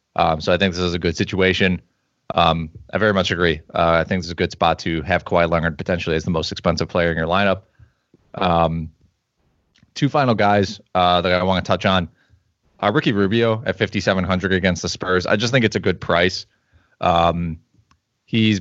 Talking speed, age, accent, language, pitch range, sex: 205 wpm, 20-39, American, English, 85-100 Hz, male